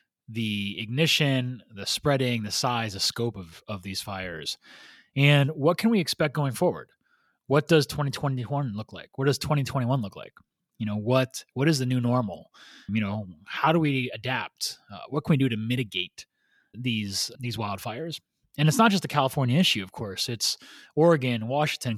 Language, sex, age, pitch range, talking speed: English, male, 30-49, 115-155 Hz, 175 wpm